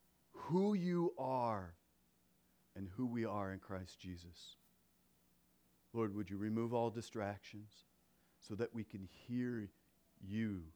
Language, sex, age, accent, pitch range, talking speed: English, male, 40-59, American, 90-150 Hz, 125 wpm